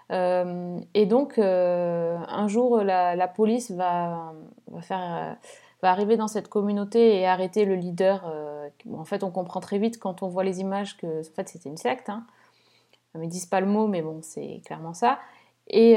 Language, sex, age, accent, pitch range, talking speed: French, female, 20-39, French, 185-225 Hz, 205 wpm